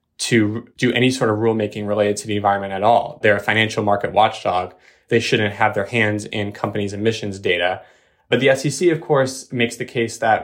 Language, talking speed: English, 200 wpm